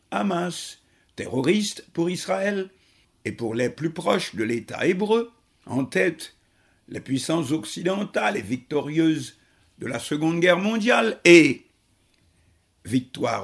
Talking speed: 115 wpm